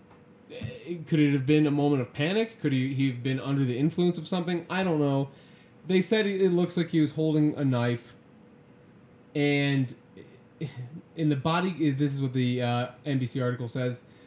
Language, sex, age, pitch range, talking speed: English, male, 20-39, 130-165 Hz, 180 wpm